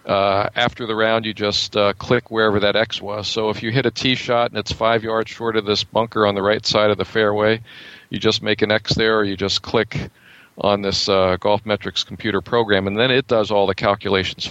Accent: American